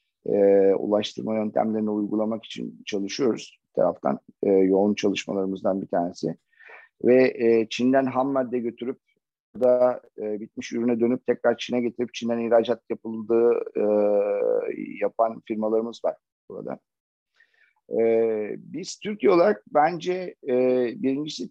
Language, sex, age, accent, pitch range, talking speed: Turkish, male, 50-69, native, 105-130 Hz, 110 wpm